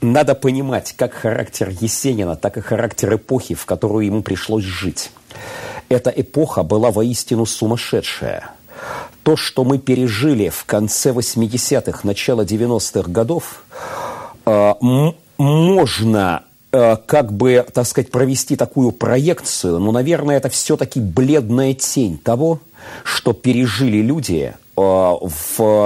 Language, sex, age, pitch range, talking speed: Russian, male, 40-59, 110-135 Hz, 115 wpm